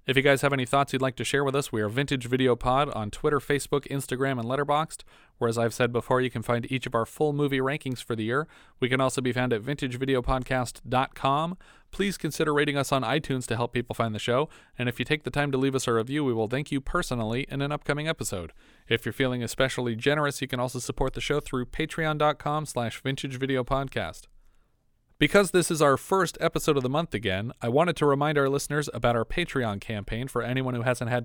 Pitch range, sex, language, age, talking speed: 120-145 Hz, male, English, 30-49, 225 wpm